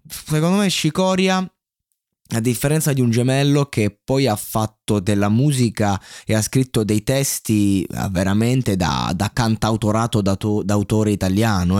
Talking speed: 140 wpm